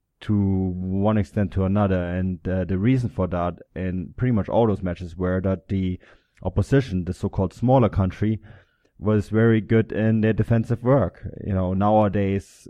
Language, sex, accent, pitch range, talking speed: English, male, German, 90-105 Hz, 165 wpm